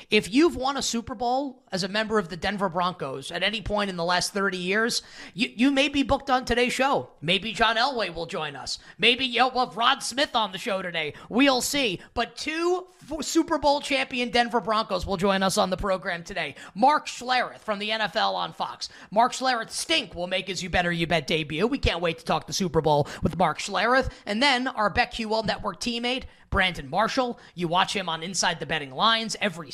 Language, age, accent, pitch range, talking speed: English, 20-39, American, 180-245 Hz, 215 wpm